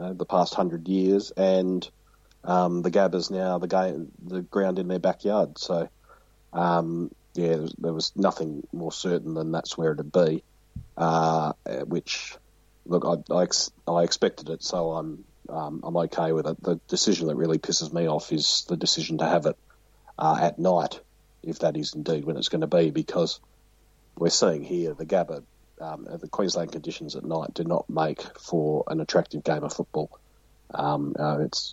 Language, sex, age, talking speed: English, male, 40-59, 180 wpm